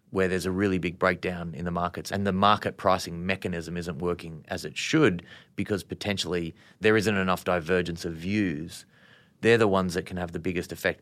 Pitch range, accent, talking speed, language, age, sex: 85-100 Hz, Australian, 195 wpm, English, 30-49, male